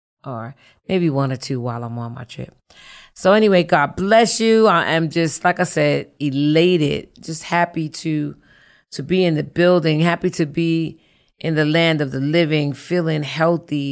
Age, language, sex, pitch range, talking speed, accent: 40-59, English, female, 140-165 Hz, 175 wpm, American